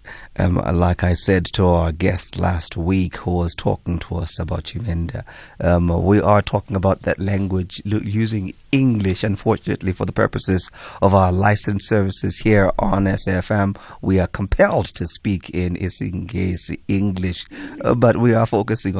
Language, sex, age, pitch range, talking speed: English, male, 30-49, 95-115 Hz, 160 wpm